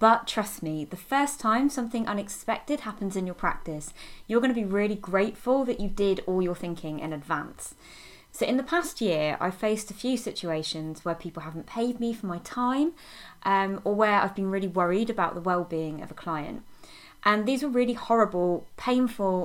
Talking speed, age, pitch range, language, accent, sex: 195 wpm, 20-39, 170-230 Hz, English, British, female